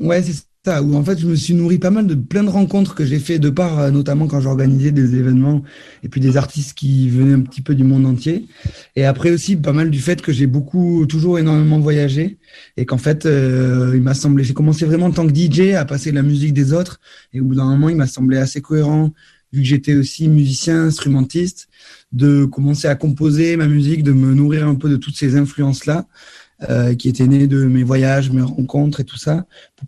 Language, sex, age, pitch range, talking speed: Arabic, male, 30-49, 130-155 Hz, 235 wpm